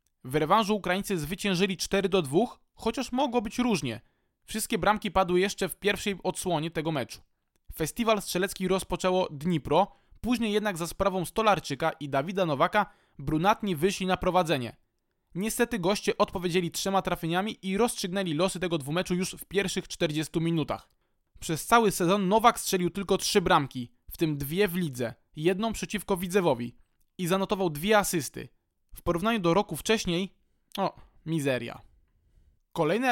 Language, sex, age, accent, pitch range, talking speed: Polish, male, 20-39, native, 165-205 Hz, 140 wpm